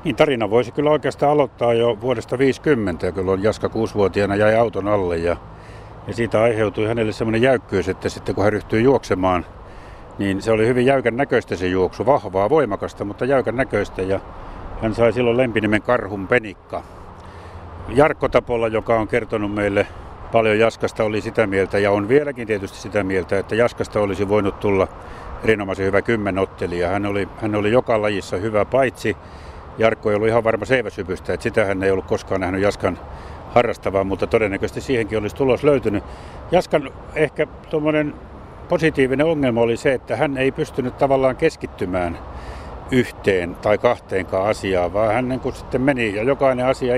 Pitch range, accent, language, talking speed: 95-125 Hz, native, Finnish, 160 wpm